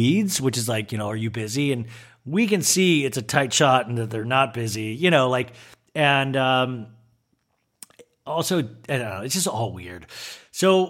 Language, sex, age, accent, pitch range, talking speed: English, male, 40-59, American, 125-175 Hz, 195 wpm